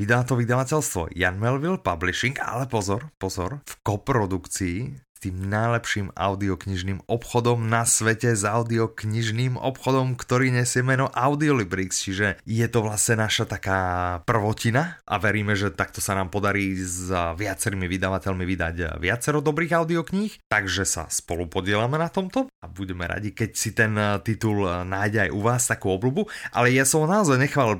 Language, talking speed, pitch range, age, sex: Slovak, 150 wpm, 100-125 Hz, 30-49, male